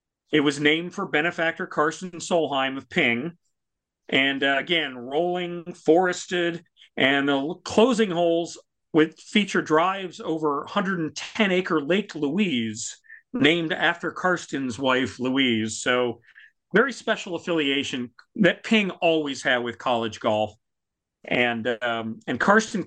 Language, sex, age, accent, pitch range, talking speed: English, male, 40-59, American, 145-185 Hz, 120 wpm